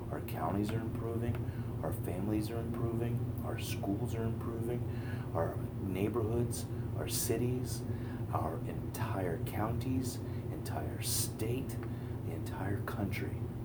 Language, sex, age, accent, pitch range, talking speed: English, male, 30-49, American, 115-120 Hz, 105 wpm